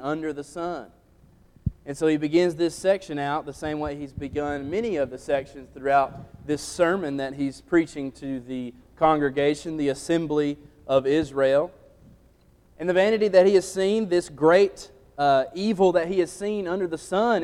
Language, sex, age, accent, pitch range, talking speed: English, male, 20-39, American, 145-185 Hz, 170 wpm